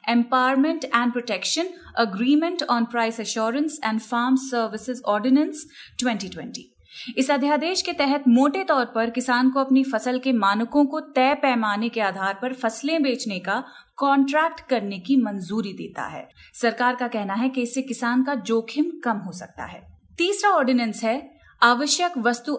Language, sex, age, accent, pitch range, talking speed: Hindi, female, 30-49, native, 230-280 Hz, 155 wpm